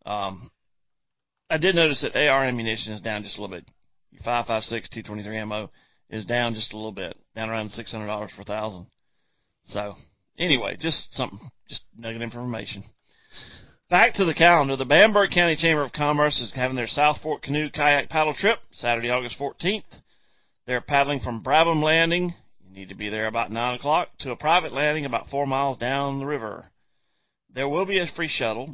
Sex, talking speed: male, 175 wpm